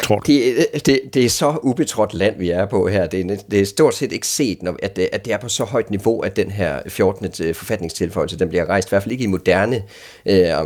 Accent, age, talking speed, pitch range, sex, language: native, 30-49, 225 wpm, 95-130 Hz, male, Danish